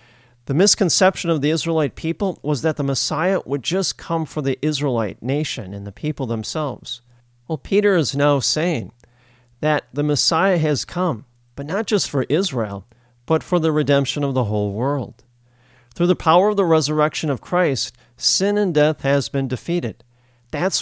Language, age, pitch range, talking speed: English, 40-59, 120-155 Hz, 170 wpm